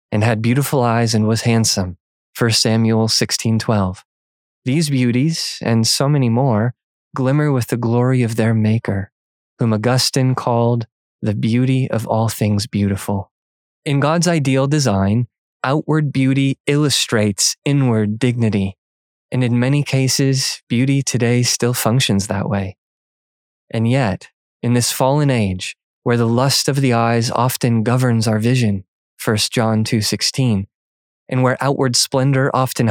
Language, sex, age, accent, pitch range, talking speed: English, male, 20-39, American, 110-130 Hz, 140 wpm